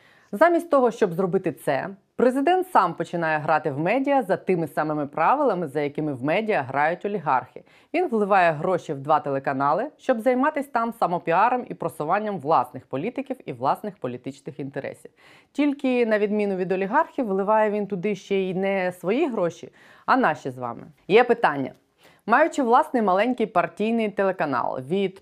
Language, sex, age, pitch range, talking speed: Ukrainian, female, 20-39, 160-225 Hz, 150 wpm